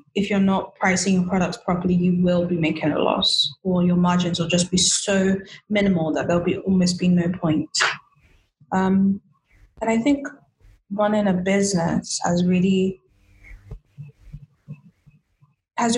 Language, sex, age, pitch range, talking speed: English, female, 10-29, 170-195 Hz, 145 wpm